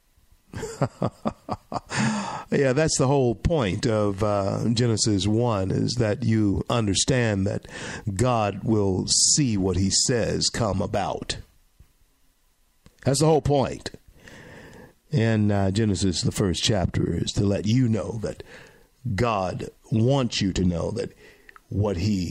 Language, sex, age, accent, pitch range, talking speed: English, male, 50-69, American, 95-125 Hz, 125 wpm